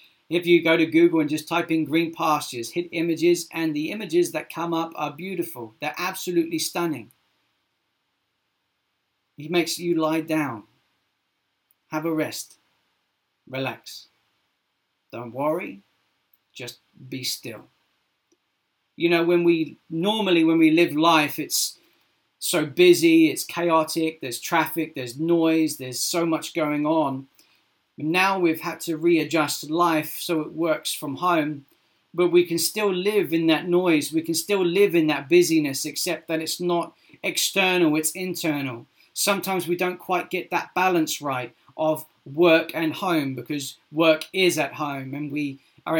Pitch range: 155-175 Hz